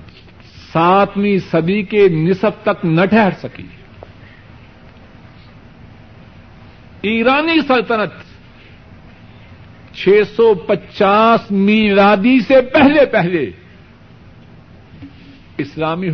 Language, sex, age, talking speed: Urdu, male, 60-79, 65 wpm